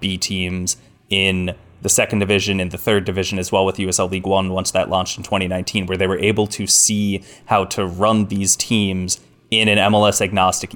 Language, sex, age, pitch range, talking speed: English, male, 20-39, 95-110 Hz, 195 wpm